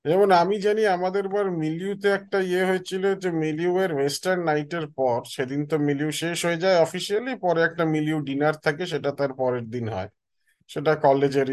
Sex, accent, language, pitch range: male, native, Bengali, 135-175 Hz